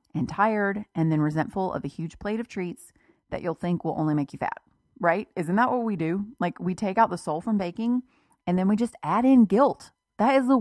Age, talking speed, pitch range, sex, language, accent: 30-49, 245 wpm, 160-210 Hz, female, English, American